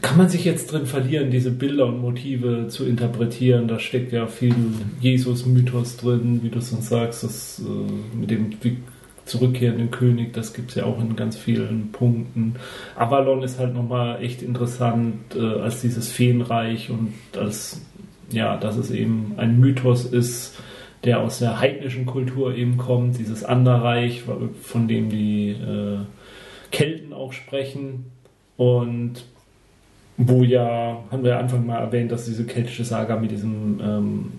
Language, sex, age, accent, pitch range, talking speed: German, male, 40-59, German, 110-125 Hz, 155 wpm